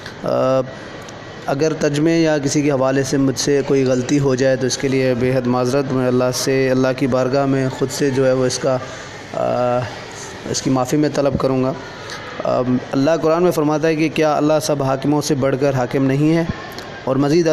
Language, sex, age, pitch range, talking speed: Urdu, male, 20-39, 130-150 Hz, 210 wpm